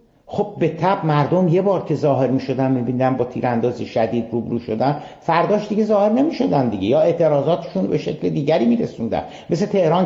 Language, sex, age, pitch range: Persian, male, 50-69, 115-160 Hz